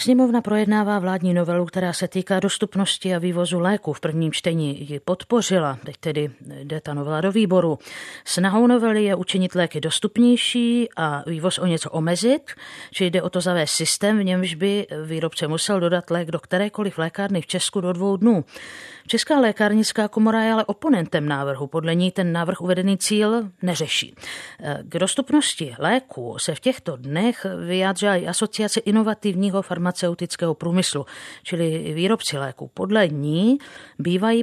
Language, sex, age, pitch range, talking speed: Czech, female, 50-69, 165-205 Hz, 150 wpm